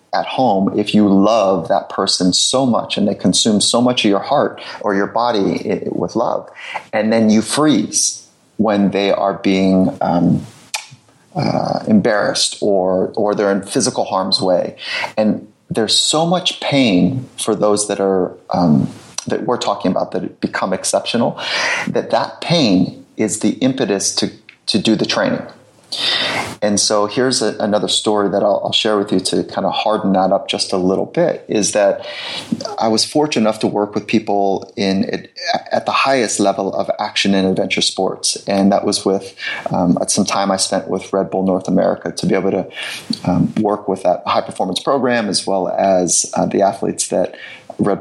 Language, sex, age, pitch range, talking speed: English, male, 30-49, 95-110 Hz, 180 wpm